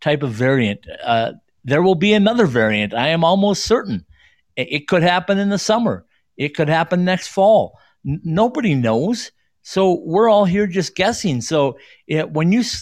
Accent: American